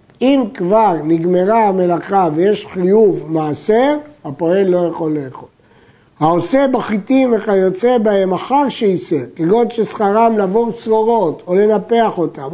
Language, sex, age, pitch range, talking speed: Hebrew, male, 60-79, 160-215 Hz, 115 wpm